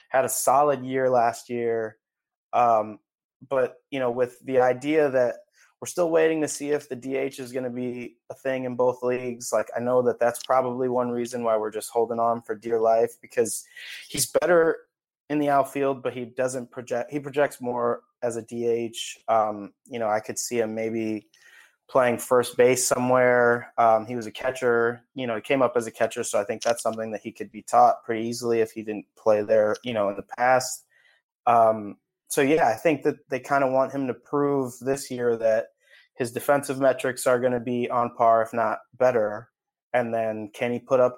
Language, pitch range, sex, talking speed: English, 115-130 Hz, male, 210 wpm